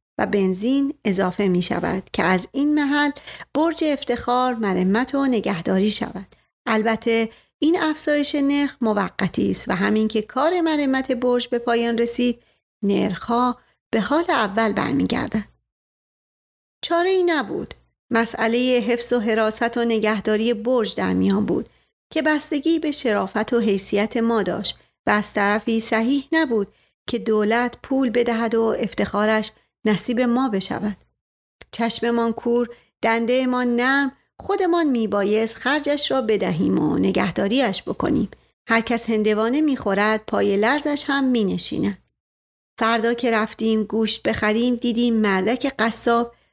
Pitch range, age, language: 215-275 Hz, 40-59, Persian